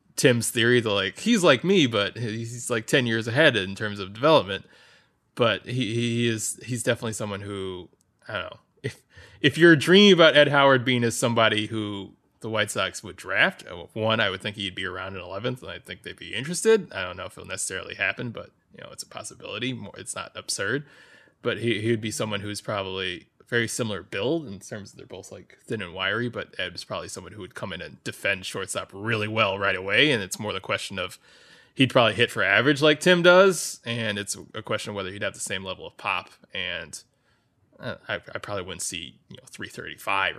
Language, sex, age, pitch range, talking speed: English, male, 20-39, 100-125 Hz, 220 wpm